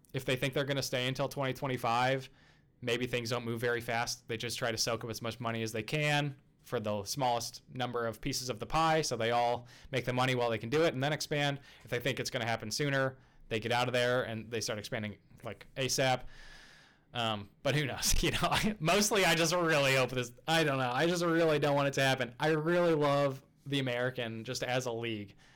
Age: 20-39